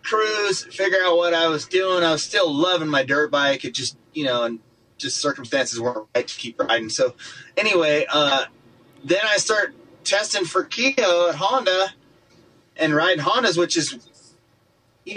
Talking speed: 170 wpm